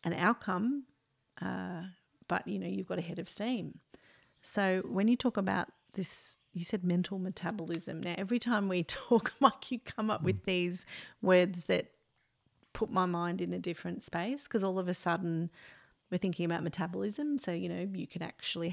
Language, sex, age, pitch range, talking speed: English, female, 30-49, 170-195 Hz, 185 wpm